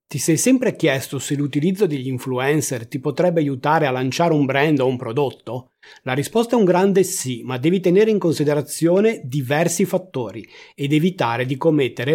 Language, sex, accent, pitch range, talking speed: Italian, male, native, 130-175 Hz, 175 wpm